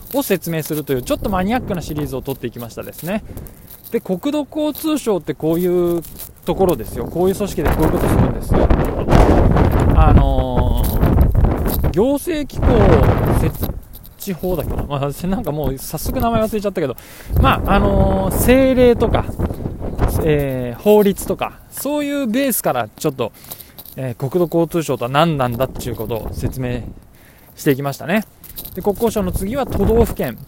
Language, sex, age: Japanese, male, 20-39